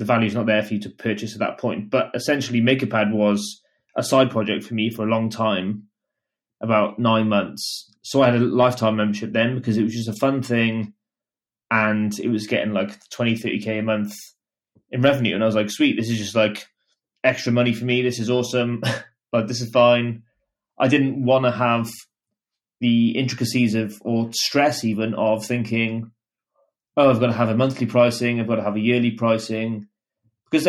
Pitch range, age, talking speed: 110-125 Hz, 20-39, 205 wpm